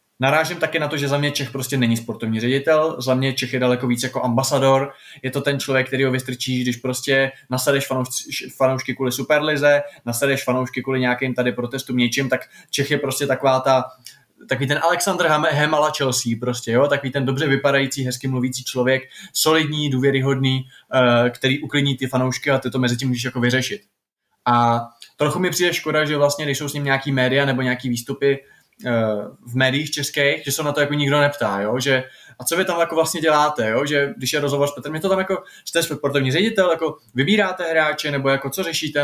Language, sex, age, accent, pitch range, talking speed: Czech, male, 20-39, native, 125-145 Hz, 200 wpm